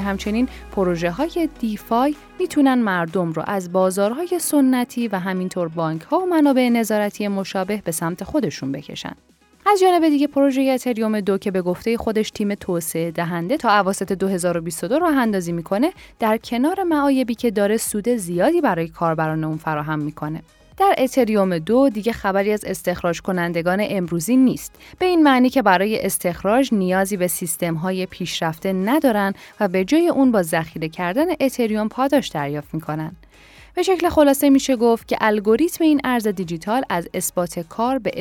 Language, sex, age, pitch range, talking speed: Persian, female, 10-29, 175-250 Hz, 160 wpm